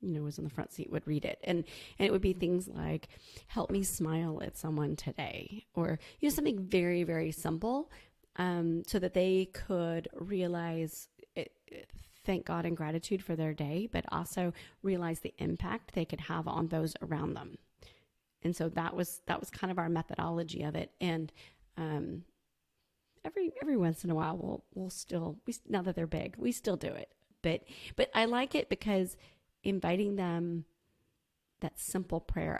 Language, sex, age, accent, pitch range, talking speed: English, female, 30-49, American, 160-190 Hz, 180 wpm